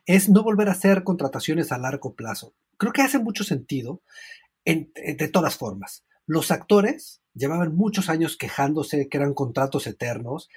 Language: Spanish